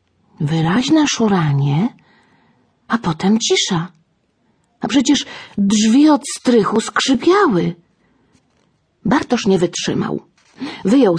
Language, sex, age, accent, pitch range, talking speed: Polish, female, 40-59, native, 180-255 Hz, 80 wpm